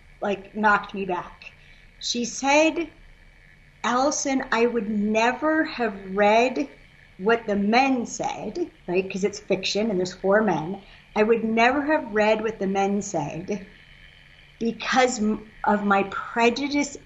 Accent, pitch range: American, 190-245 Hz